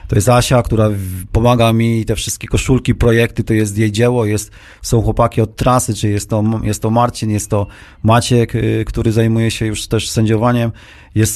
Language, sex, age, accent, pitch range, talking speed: Polish, male, 30-49, native, 110-130 Hz, 195 wpm